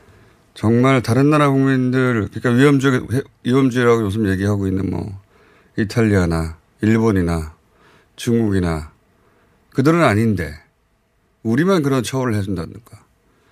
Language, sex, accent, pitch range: Korean, male, native, 95-135 Hz